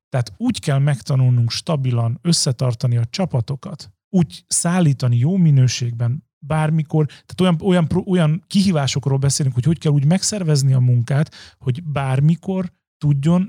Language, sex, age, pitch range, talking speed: Hungarian, male, 40-59, 130-160 Hz, 130 wpm